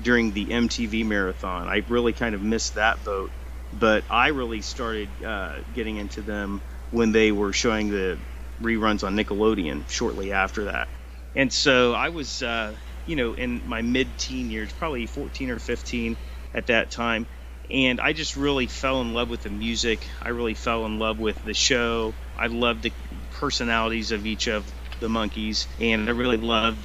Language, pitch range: English, 105-125 Hz